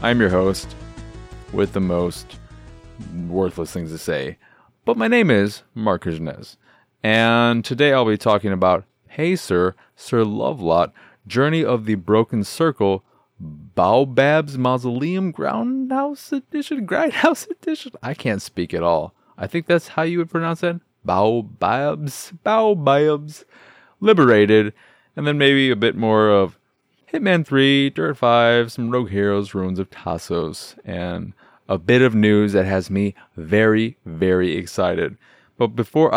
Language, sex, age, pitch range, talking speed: English, male, 30-49, 105-140 Hz, 140 wpm